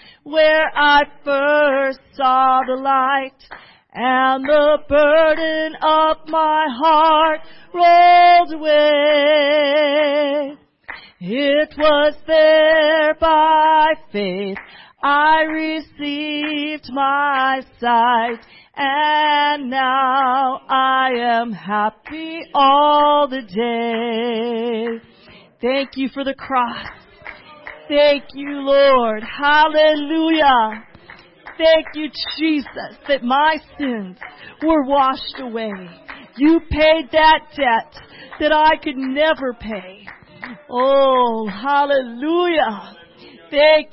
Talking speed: 85 wpm